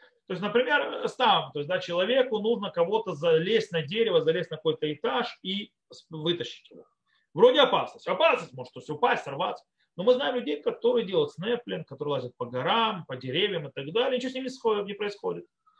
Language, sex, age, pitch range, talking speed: Russian, male, 30-49, 175-265 Hz, 180 wpm